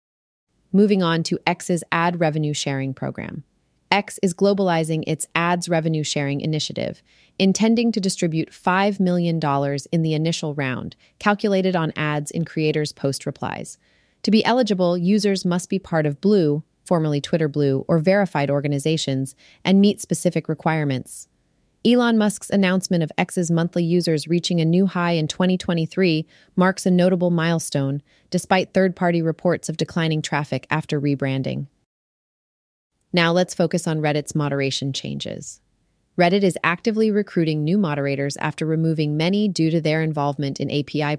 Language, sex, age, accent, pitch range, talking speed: English, female, 30-49, American, 150-185 Hz, 145 wpm